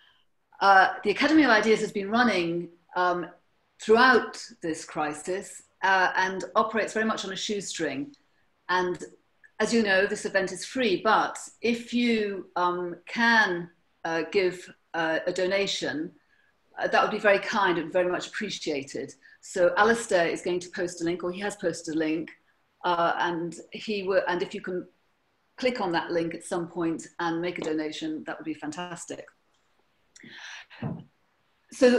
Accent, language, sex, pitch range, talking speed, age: British, English, female, 170-215 Hz, 160 wpm, 40-59